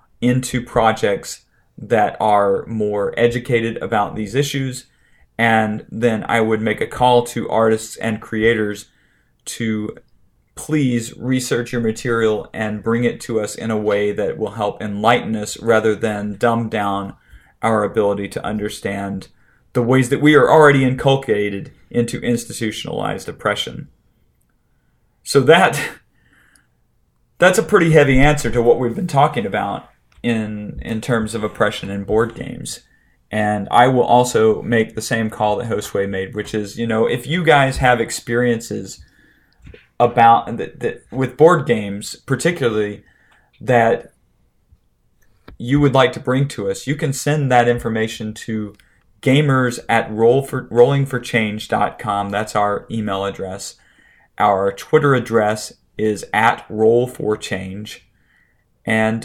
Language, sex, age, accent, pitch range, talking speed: English, male, 30-49, American, 105-125 Hz, 135 wpm